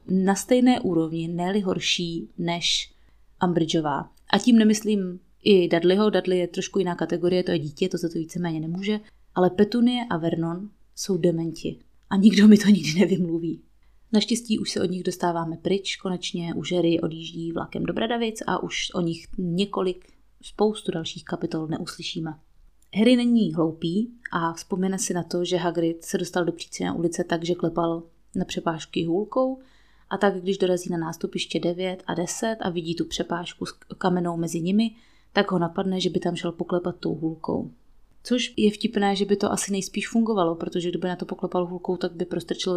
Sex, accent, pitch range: female, native, 170-205 Hz